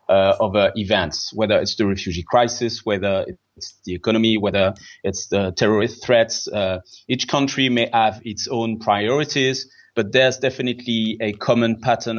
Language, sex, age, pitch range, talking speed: English, male, 30-49, 95-115 Hz, 170 wpm